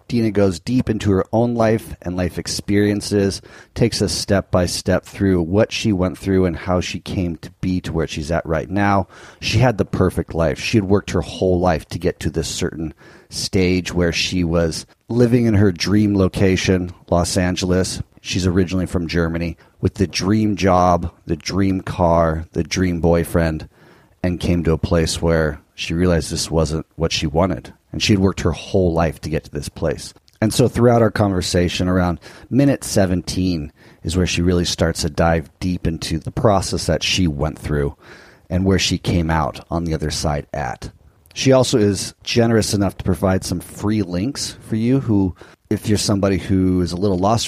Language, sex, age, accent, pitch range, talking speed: English, male, 30-49, American, 85-105 Hz, 190 wpm